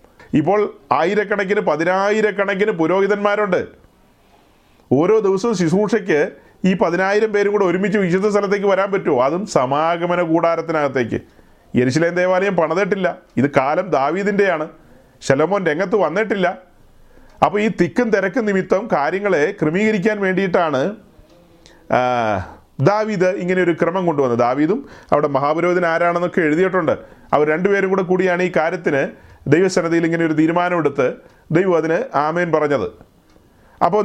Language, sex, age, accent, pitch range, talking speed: Malayalam, male, 40-59, native, 150-195 Hz, 105 wpm